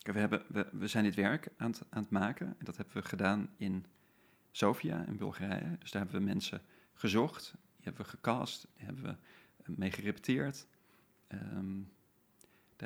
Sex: male